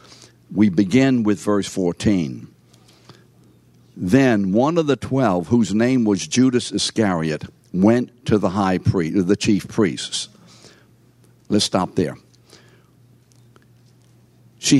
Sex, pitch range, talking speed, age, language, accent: male, 95-120 Hz, 110 wpm, 60-79, English, American